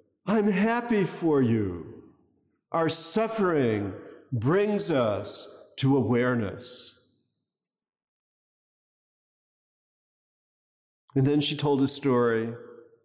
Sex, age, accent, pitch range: male, 50-69, American, 125-160 Hz